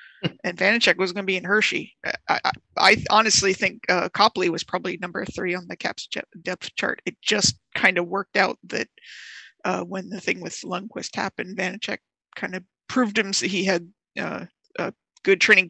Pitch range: 180-205 Hz